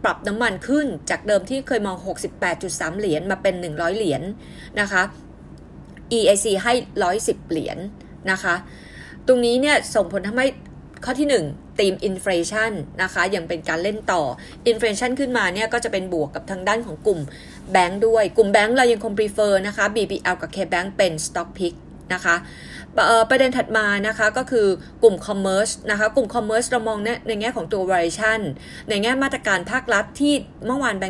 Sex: female